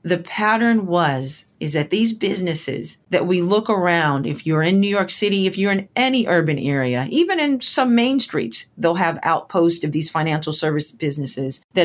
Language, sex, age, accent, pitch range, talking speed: English, female, 40-59, American, 160-195 Hz, 185 wpm